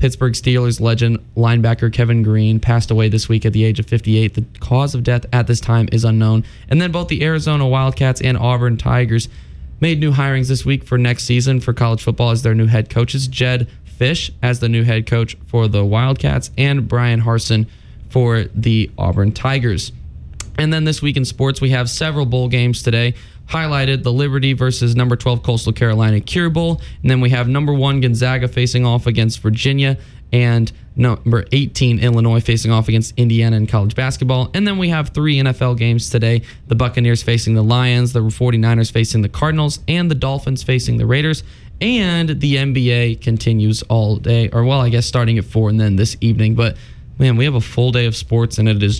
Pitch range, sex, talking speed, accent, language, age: 115-130 Hz, male, 200 wpm, American, English, 20-39